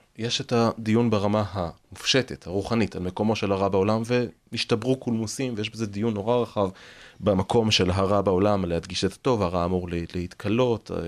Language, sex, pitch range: Hebrew, male, 95-120 Hz